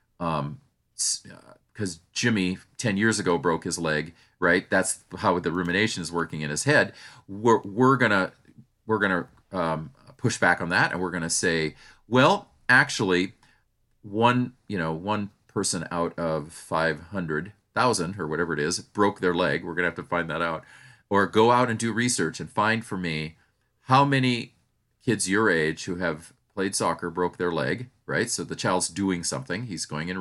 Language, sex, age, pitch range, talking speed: English, male, 40-59, 85-115 Hz, 185 wpm